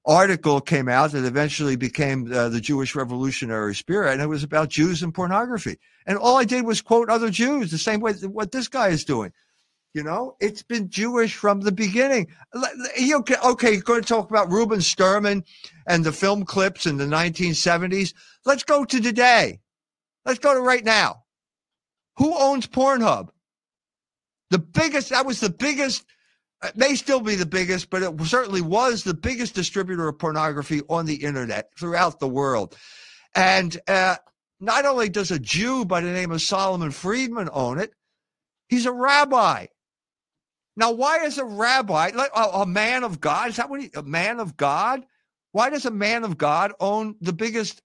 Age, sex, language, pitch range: 50-69, male, English, 170-245 Hz